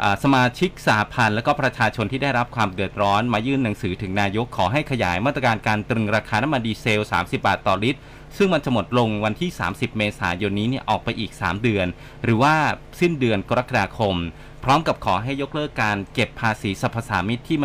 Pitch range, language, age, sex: 105-130 Hz, Thai, 20-39, male